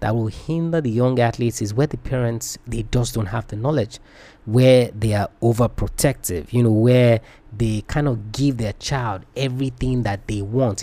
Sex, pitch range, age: male, 105-130 Hz, 20-39